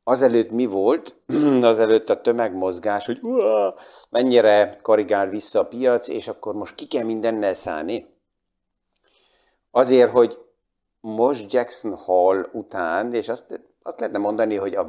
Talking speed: 130 wpm